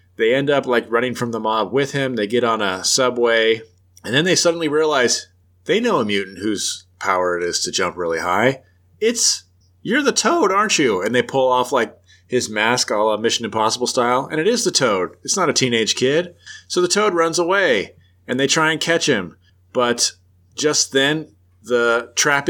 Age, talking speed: 30-49, 205 wpm